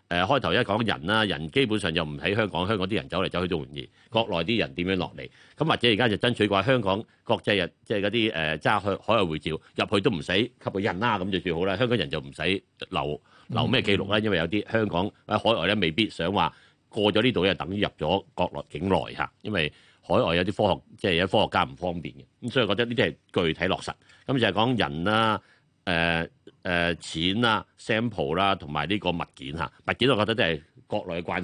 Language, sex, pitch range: Chinese, male, 85-110 Hz